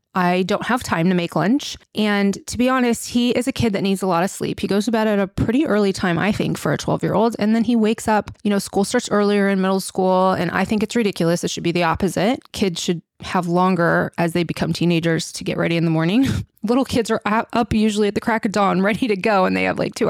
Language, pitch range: English, 185-235 Hz